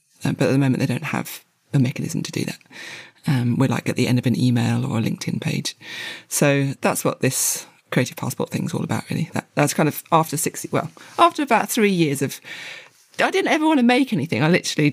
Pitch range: 130-170 Hz